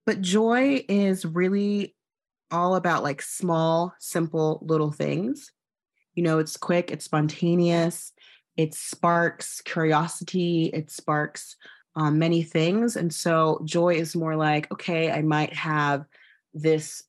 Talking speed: 125 wpm